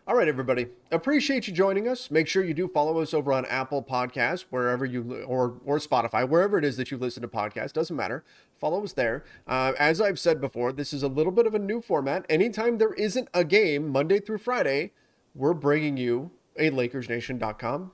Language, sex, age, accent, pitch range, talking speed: English, male, 30-49, American, 125-170 Hz, 205 wpm